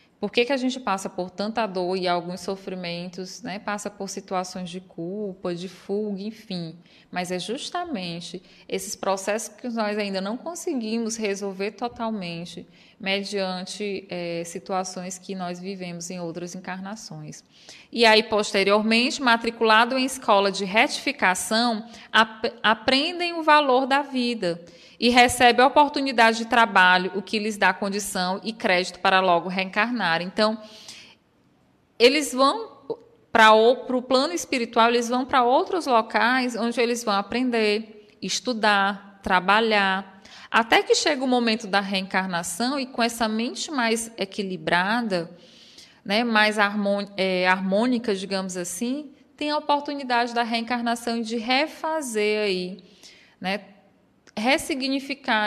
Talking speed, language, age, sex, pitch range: 130 wpm, Portuguese, 20-39, female, 190-240 Hz